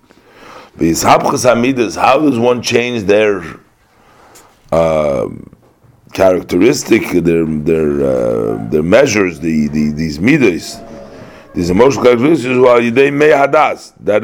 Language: English